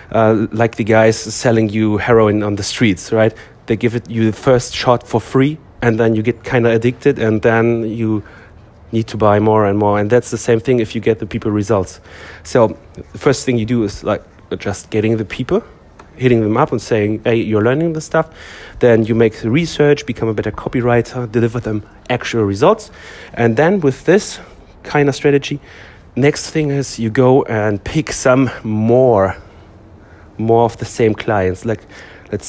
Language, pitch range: English, 110-130 Hz